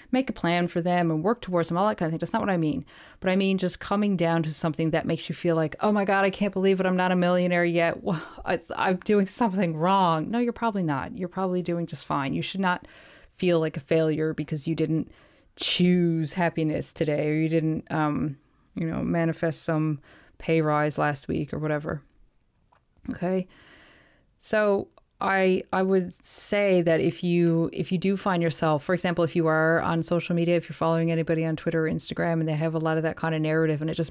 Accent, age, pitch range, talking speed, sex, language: American, 20-39, 160-185 Hz, 225 wpm, female, English